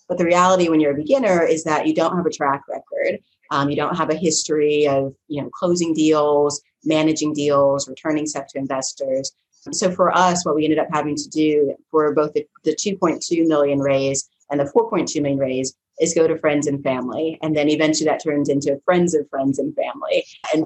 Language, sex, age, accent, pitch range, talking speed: English, female, 30-49, American, 140-160 Hz, 210 wpm